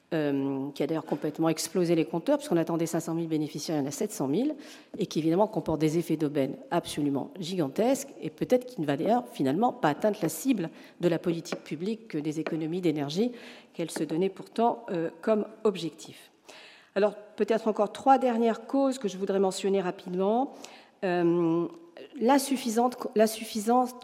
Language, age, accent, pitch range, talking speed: French, 40-59, French, 165-230 Hz, 165 wpm